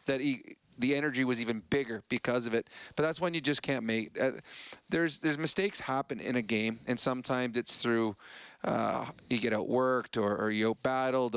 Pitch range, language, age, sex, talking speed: 115-135 Hz, English, 40-59, male, 195 wpm